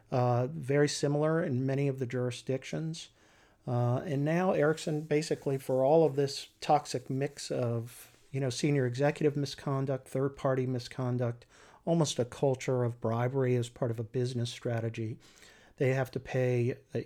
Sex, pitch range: male, 120-140 Hz